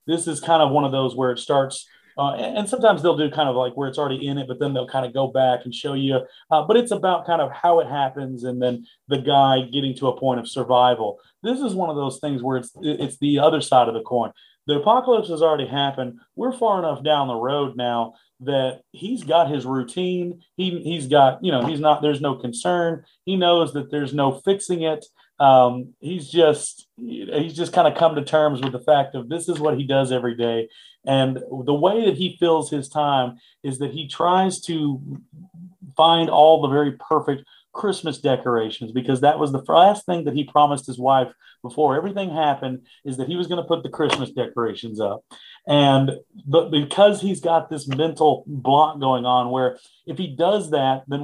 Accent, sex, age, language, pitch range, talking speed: American, male, 30-49, English, 130-165 Hz, 215 wpm